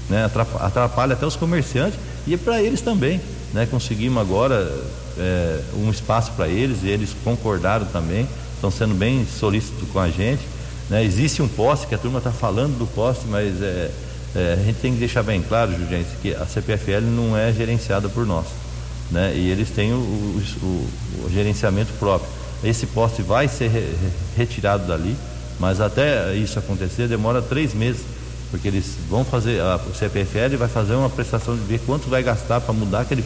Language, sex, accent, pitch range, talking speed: Portuguese, male, Brazilian, 95-120 Hz, 170 wpm